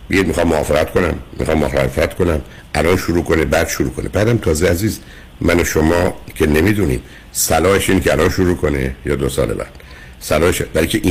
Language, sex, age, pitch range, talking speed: Persian, male, 60-79, 65-100 Hz, 180 wpm